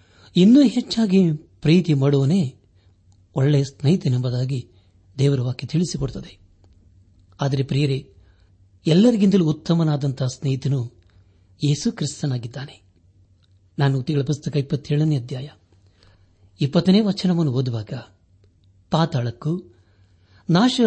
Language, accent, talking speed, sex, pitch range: Kannada, native, 70 wpm, male, 95-155 Hz